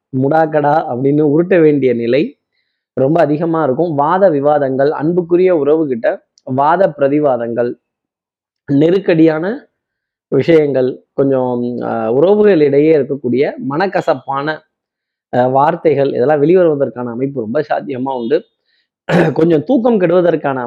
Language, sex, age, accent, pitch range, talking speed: Tamil, male, 20-39, native, 135-175 Hz, 85 wpm